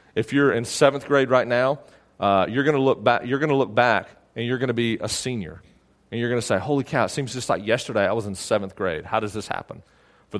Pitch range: 105-145 Hz